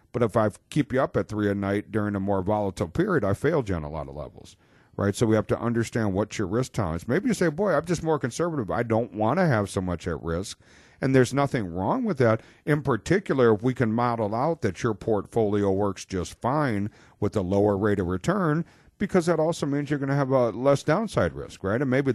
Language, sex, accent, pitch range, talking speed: English, male, American, 95-130 Hz, 245 wpm